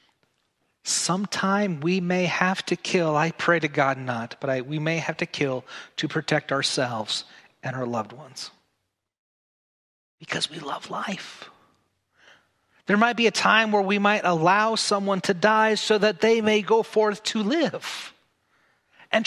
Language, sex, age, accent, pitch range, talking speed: English, male, 40-59, American, 150-205 Hz, 155 wpm